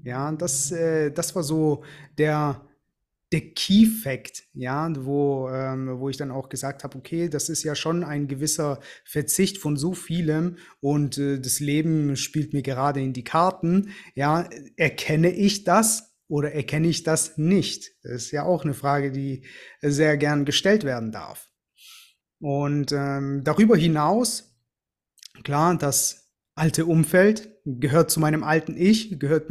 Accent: German